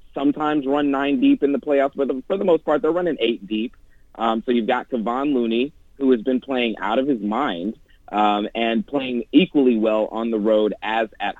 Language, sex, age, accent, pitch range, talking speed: English, male, 30-49, American, 105-130 Hz, 220 wpm